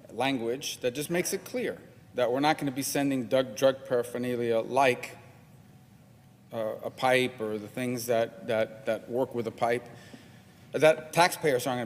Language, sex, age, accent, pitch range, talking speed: English, male, 40-59, American, 125-160 Hz, 170 wpm